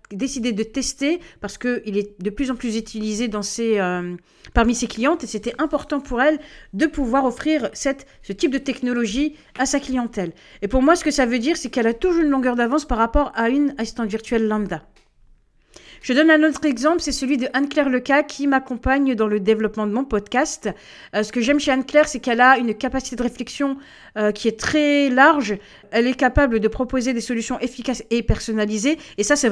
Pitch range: 225-280 Hz